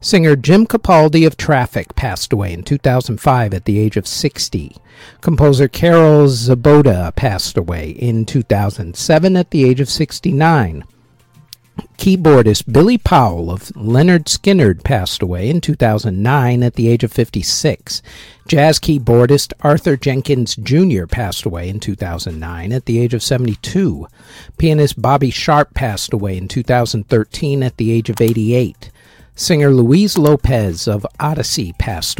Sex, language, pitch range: male, English, 110-150 Hz